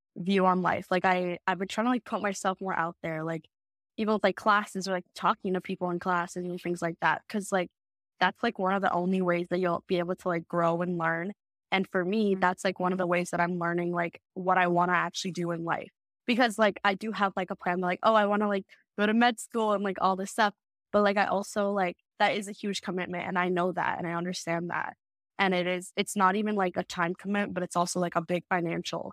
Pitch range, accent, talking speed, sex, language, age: 175-200 Hz, American, 265 wpm, female, English, 10-29